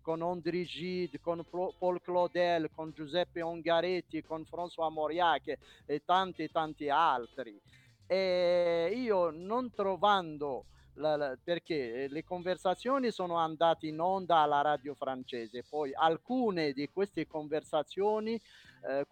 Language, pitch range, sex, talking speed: Italian, 145-185 Hz, male, 120 wpm